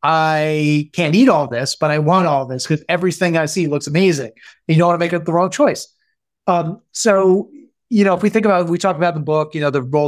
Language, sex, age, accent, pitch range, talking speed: English, male, 30-49, American, 145-180 Hz, 255 wpm